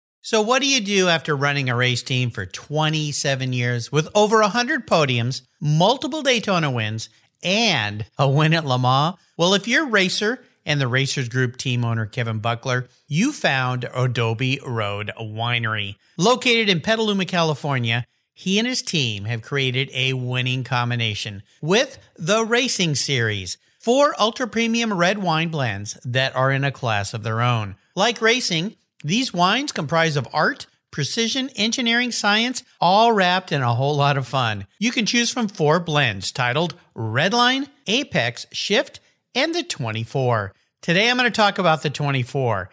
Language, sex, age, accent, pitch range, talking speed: English, male, 50-69, American, 125-205 Hz, 160 wpm